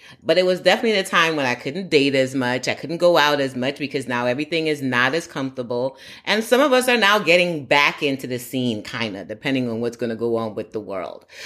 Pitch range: 115-160 Hz